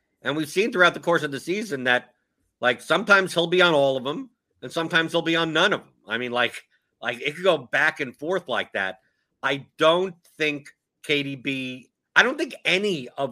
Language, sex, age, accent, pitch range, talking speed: English, male, 50-69, American, 125-165 Hz, 215 wpm